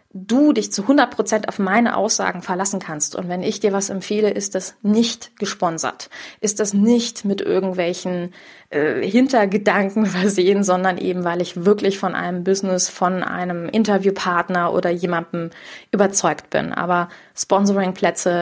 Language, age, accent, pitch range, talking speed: German, 20-39, German, 180-210 Hz, 145 wpm